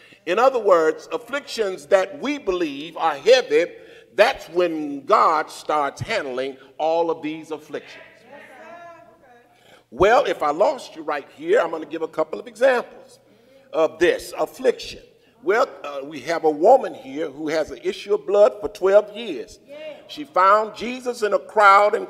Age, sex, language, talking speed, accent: 50-69, male, English, 160 wpm, American